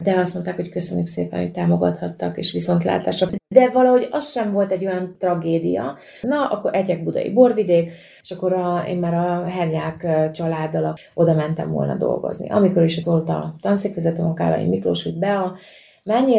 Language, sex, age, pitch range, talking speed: Hungarian, female, 30-49, 160-185 Hz, 170 wpm